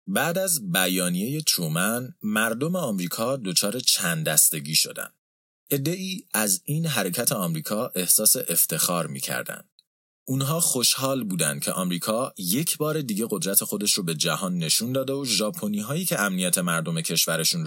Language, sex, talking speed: Persian, male, 130 wpm